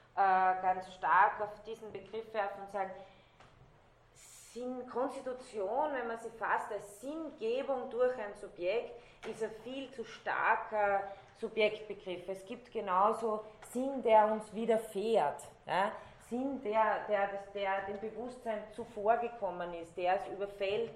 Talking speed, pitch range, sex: 130 wpm, 190-220 Hz, female